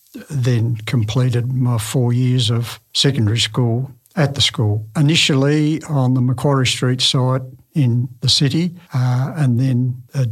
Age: 60-79